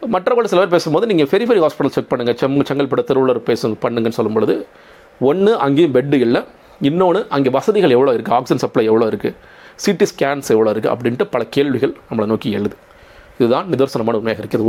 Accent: native